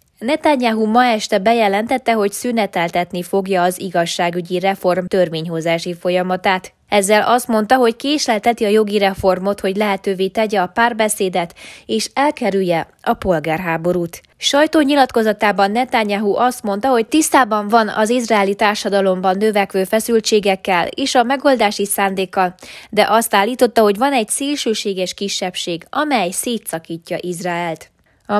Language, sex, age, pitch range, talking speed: Hungarian, female, 20-39, 190-230 Hz, 120 wpm